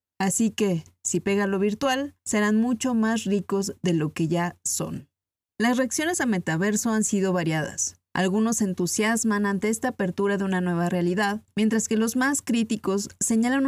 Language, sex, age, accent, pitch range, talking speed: Spanish, female, 30-49, Mexican, 175-225 Hz, 160 wpm